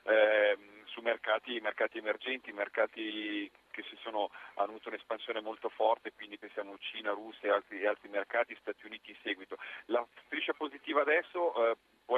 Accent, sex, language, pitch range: native, male, Italian, 110-125 Hz